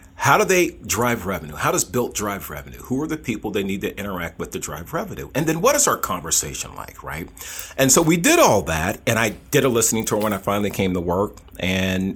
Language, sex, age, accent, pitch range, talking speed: English, male, 40-59, American, 90-115 Hz, 240 wpm